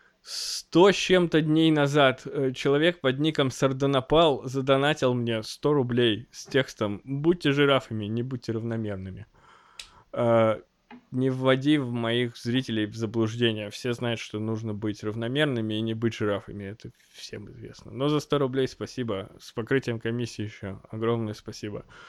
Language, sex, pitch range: Russian, male, 115-140 Hz